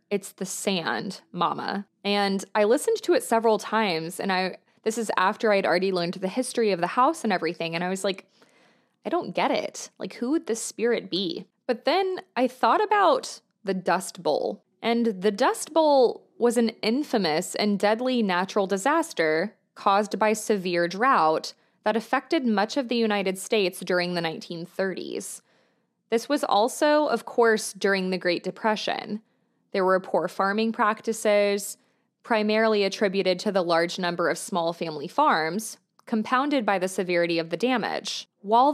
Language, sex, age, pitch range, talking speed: English, female, 20-39, 190-235 Hz, 165 wpm